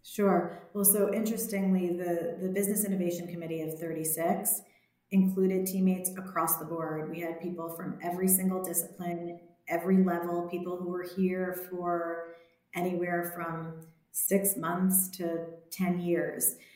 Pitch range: 165-185 Hz